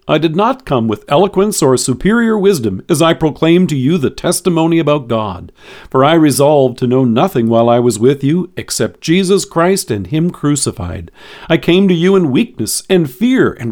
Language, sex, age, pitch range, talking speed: English, male, 50-69, 120-175 Hz, 195 wpm